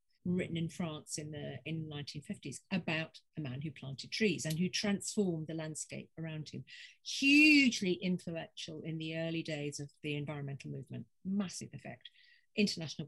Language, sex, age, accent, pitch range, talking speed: English, female, 50-69, British, 155-205 Hz, 150 wpm